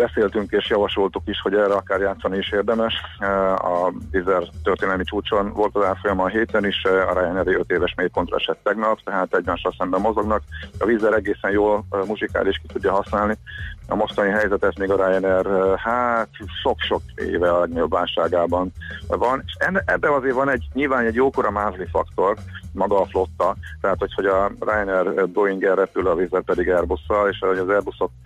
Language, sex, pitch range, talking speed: Hungarian, male, 90-100 Hz, 165 wpm